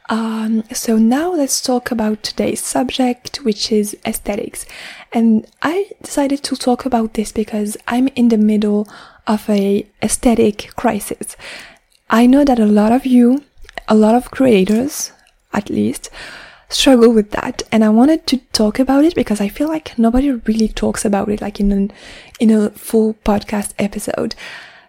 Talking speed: 160 wpm